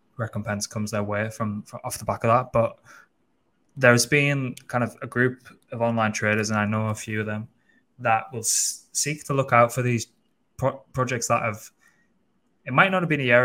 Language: English